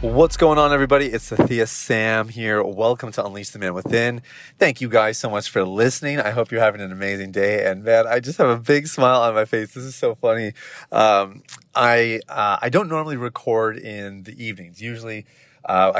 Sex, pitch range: male, 100-120 Hz